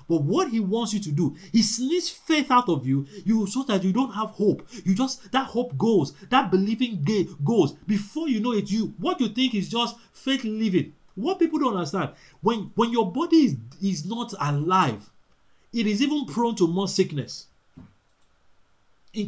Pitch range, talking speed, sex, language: 175-235 Hz, 190 wpm, male, English